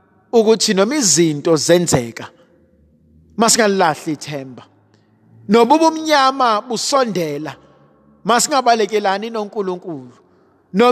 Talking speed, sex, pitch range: 90 wpm, male, 195-265 Hz